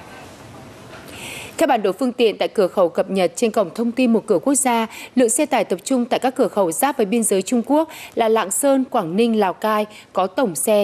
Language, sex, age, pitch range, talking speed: Vietnamese, female, 20-39, 205-255 Hz, 240 wpm